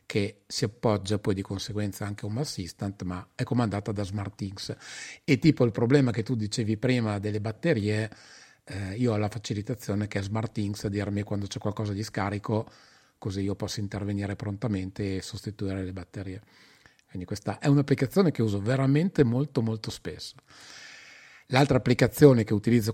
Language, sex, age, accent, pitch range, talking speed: Italian, male, 30-49, native, 100-115 Hz, 165 wpm